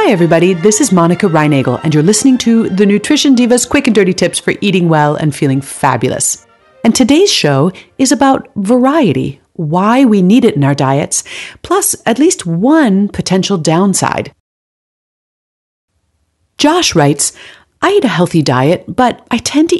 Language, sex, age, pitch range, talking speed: English, female, 40-59, 155-245 Hz, 160 wpm